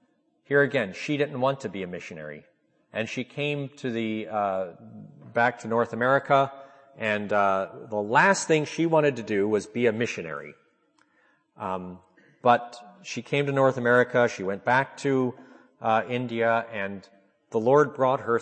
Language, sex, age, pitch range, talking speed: English, male, 40-59, 100-135 Hz, 165 wpm